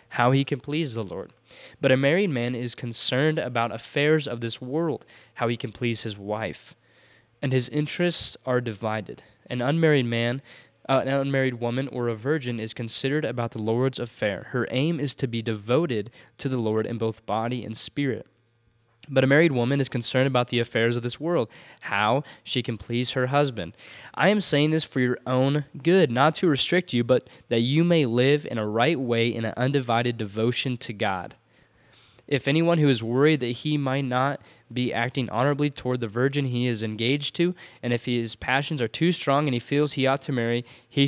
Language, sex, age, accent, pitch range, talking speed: English, male, 20-39, American, 115-140 Hz, 200 wpm